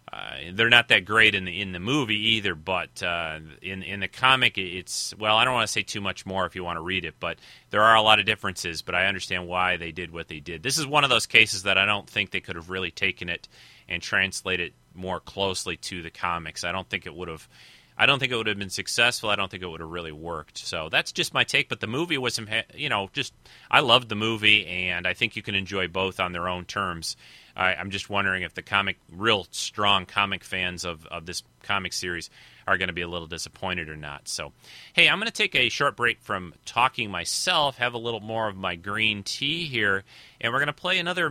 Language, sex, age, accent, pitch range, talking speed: English, male, 30-49, American, 90-115 Hz, 255 wpm